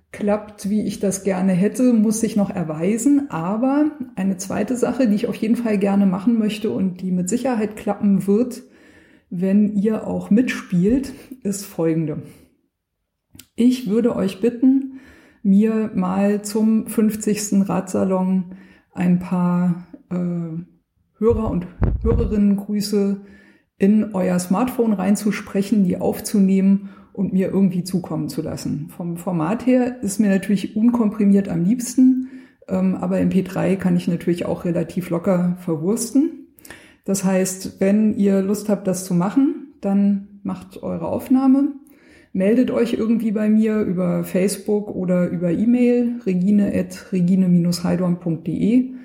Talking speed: 130 wpm